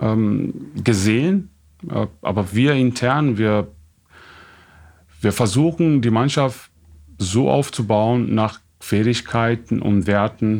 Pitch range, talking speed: 95-115 Hz, 85 wpm